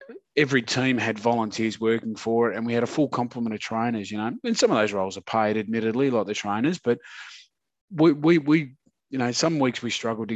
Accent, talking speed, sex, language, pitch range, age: Australian, 225 wpm, male, English, 100-120 Hz, 30-49